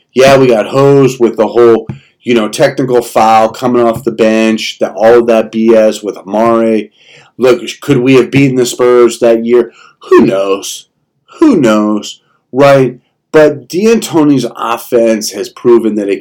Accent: American